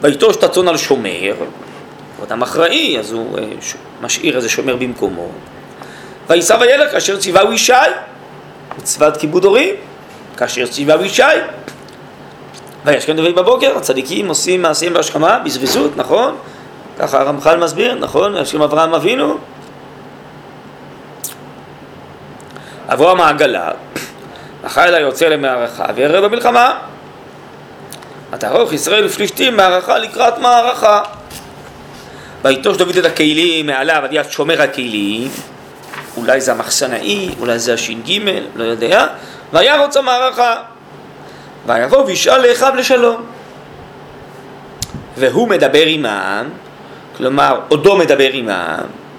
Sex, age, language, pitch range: male, 30-49, Hebrew, 150-240 Hz